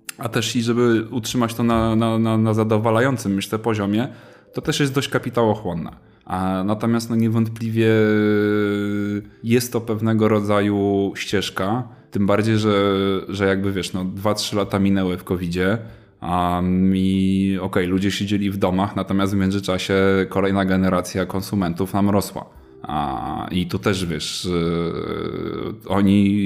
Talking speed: 135 wpm